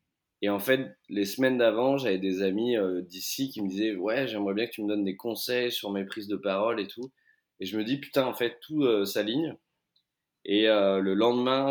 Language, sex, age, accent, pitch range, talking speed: French, male, 20-39, French, 95-120 Hz, 245 wpm